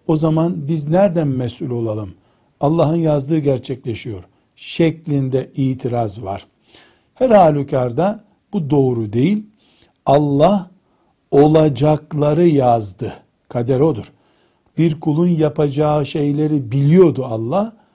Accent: native